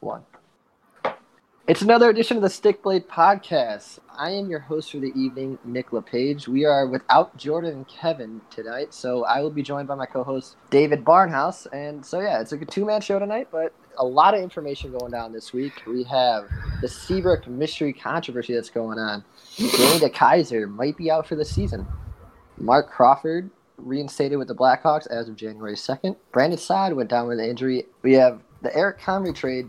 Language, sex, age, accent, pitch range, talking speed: English, male, 20-39, American, 125-160 Hz, 185 wpm